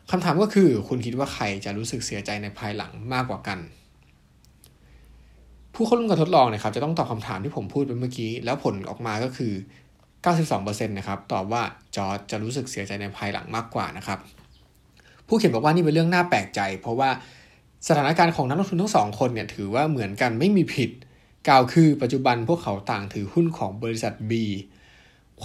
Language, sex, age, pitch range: Thai, male, 20-39, 100-135 Hz